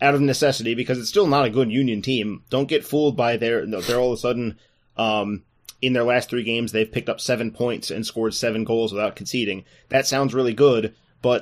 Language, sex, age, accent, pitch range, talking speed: English, male, 20-39, American, 110-125 Hz, 225 wpm